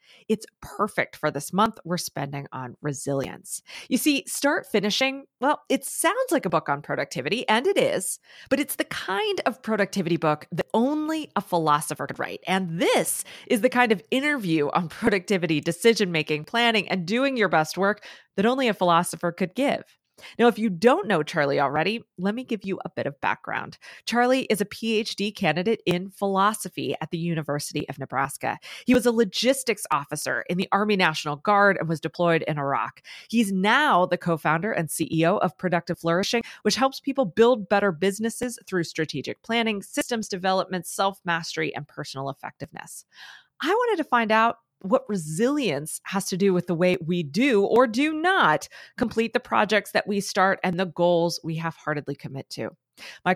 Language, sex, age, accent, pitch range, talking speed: English, female, 30-49, American, 165-230 Hz, 175 wpm